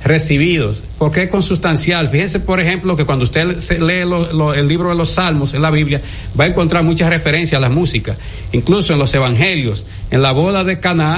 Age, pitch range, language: 60-79, 125-170 Hz, Spanish